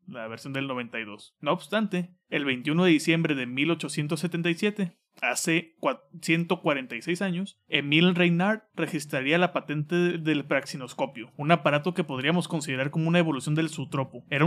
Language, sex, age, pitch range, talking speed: Spanish, male, 30-49, 140-175 Hz, 135 wpm